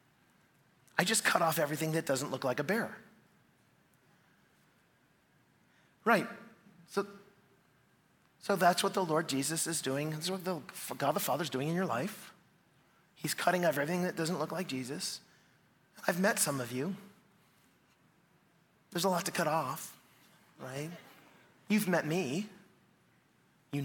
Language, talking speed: English, 140 wpm